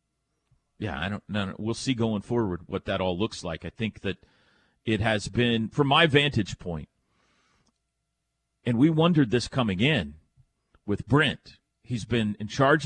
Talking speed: 170 wpm